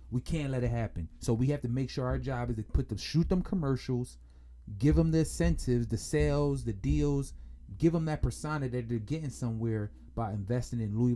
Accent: American